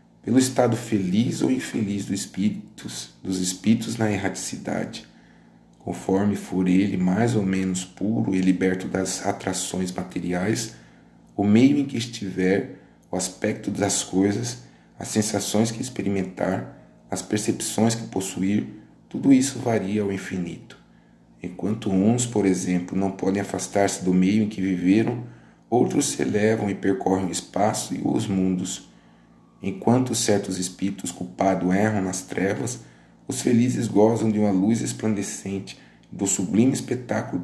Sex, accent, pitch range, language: male, Brazilian, 95-110 Hz, Portuguese